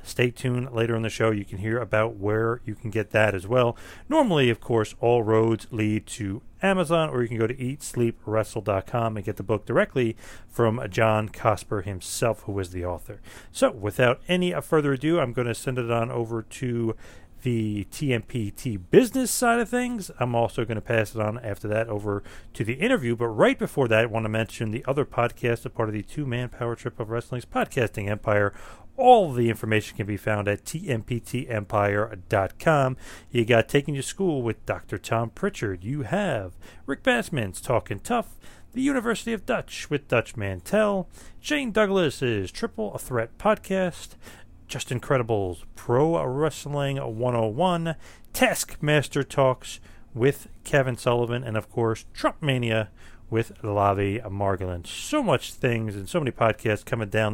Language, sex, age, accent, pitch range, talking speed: English, male, 40-59, American, 105-140 Hz, 170 wpm